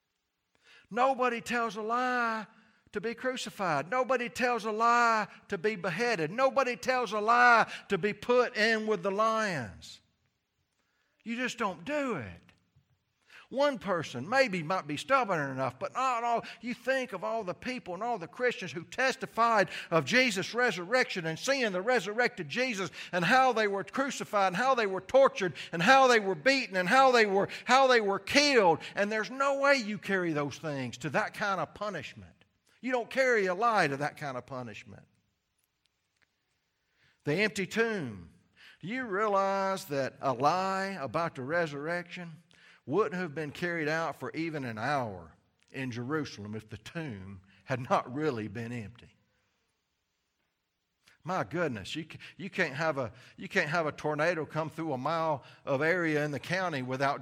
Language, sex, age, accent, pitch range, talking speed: English, male, 60-79, American, 150-230 Hz, 165 wpm